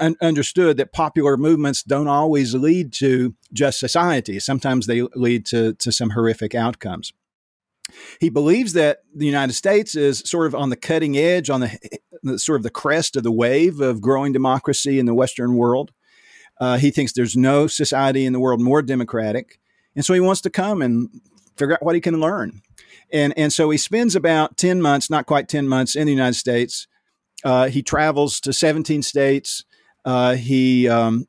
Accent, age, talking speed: American, 50-69, 185 wpm